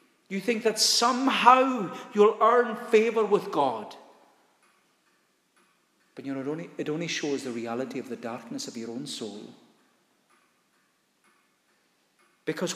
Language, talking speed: English, 125 wpm